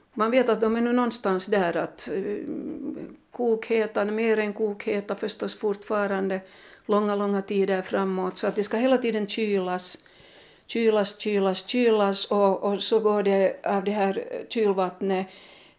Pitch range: 180-215 Hz